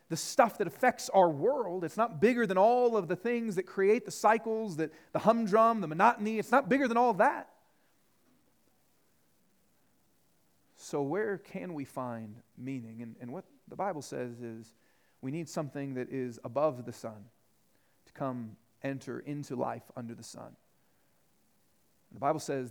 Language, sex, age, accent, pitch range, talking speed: English, male, 40-59, American, 130-205 Hz, 160 wpm